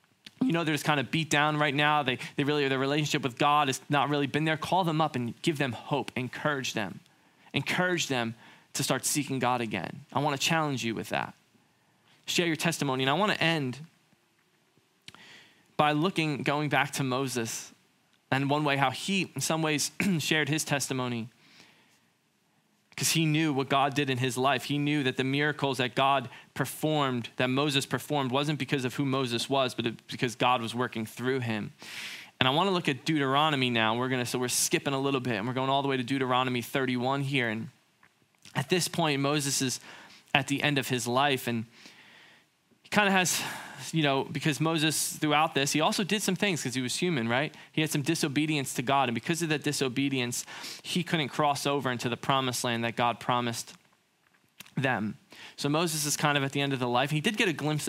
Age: 20-39